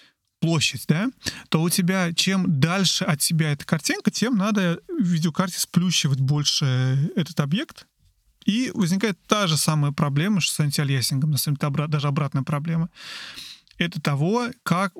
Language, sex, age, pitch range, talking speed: Russian, male, 30-49, 150-180 Hz, 150 wpm